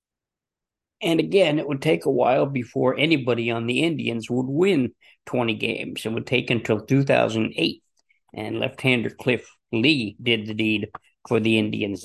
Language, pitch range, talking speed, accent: English, 110-140 Hz, 155 wpm, American